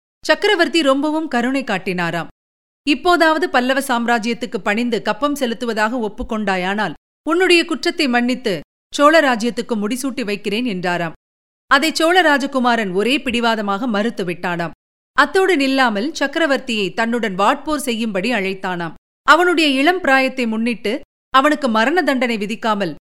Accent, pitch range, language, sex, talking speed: native, 205-290 Hz, Tamil, female, 95 wpm